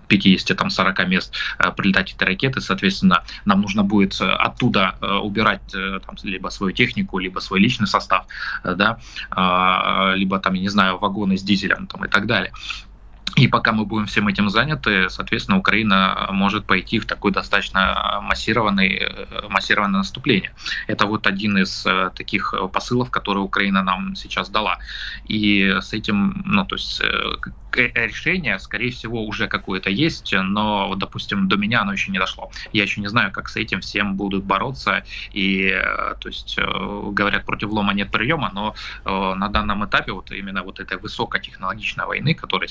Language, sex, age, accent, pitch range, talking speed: Russian, male, 20-39, native, 95-110 Hz, 155 wpm